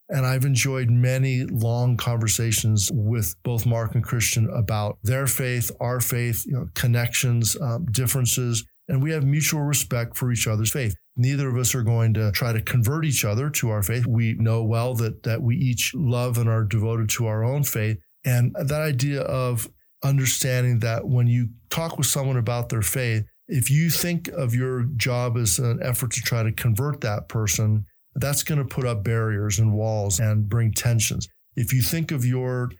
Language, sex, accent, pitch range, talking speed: English, male, American, 115-130 Hz, 190 wpm